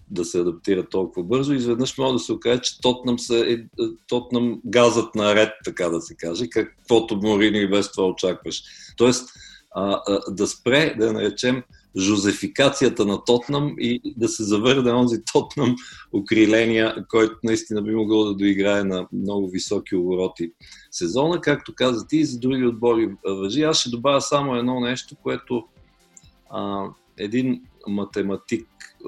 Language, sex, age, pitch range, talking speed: Bulgarian, male, 50-69, 100-120 Hz, 150 wpm